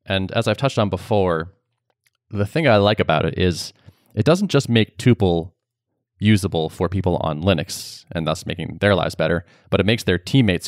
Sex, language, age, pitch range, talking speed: male, English, 20-39, 90-120 Hz, 190 wpm